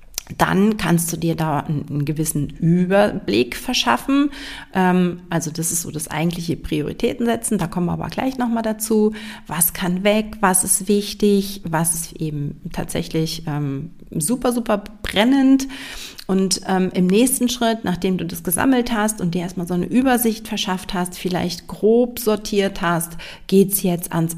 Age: 40-59